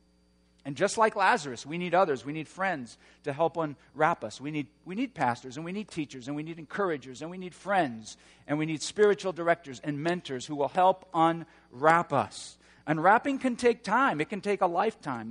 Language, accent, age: English, American, 50-69